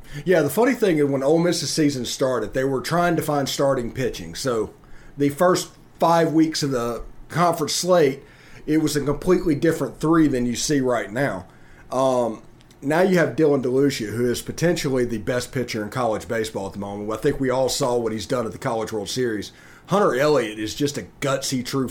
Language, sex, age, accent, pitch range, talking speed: English, male, 40-59, American, 125-160 Hz, 205 wpm